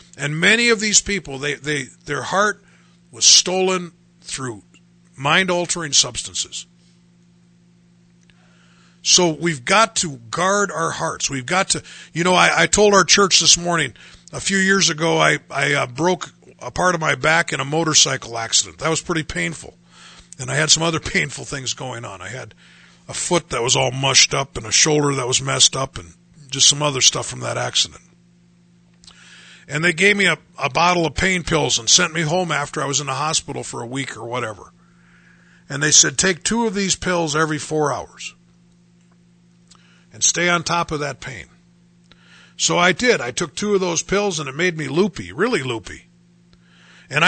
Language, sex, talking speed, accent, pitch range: English, male, 185 wpm, American, 135-180 Hz